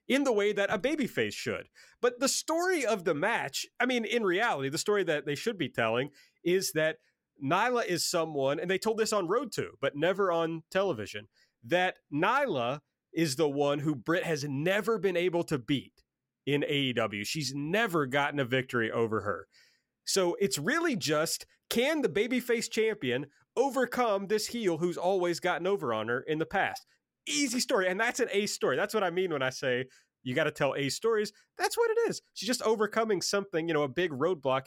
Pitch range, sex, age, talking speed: 145-215 Hz, male, 30-49, 200 wpm